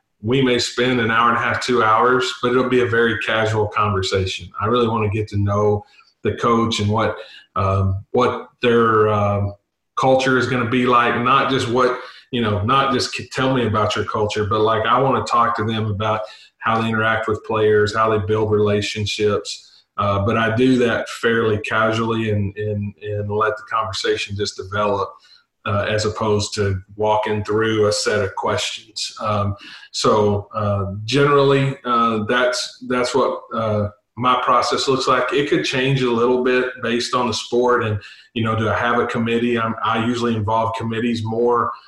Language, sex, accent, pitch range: English, male, American, 105-120 Hz